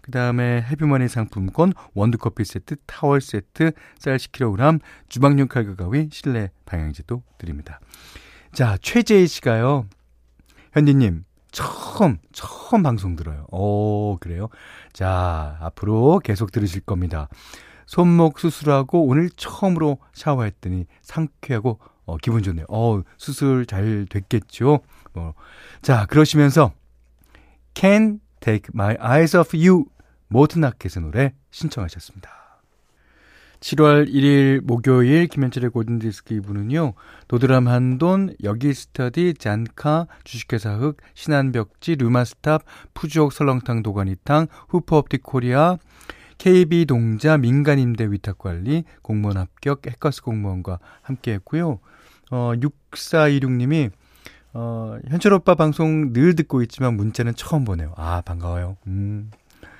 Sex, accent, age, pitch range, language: male, native, 40-59, 100-150 Hz, Korean